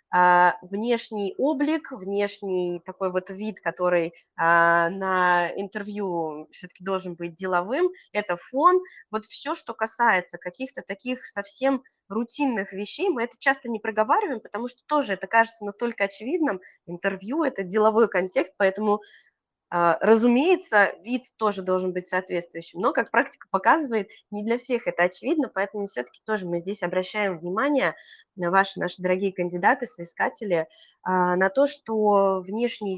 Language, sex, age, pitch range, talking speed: Russian, female, 20-39, 185-235 Hz, 135 wpm